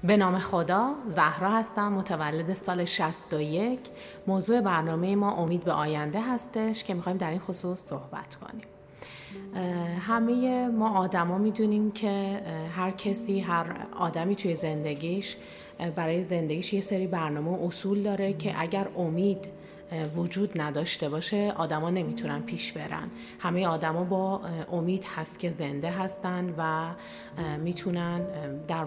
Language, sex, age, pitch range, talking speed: Persian, female, 30-49, 165-195 Hz, 130 wpm